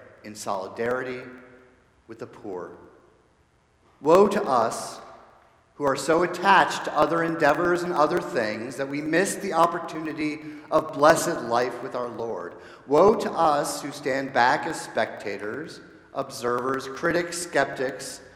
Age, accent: 50-69, American